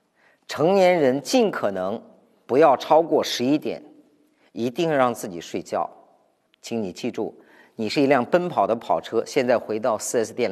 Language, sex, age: Chinese, male, 50-69